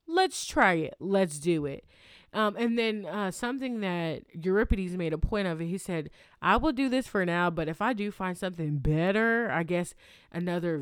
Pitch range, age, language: 175-220 Hz, 20-39, English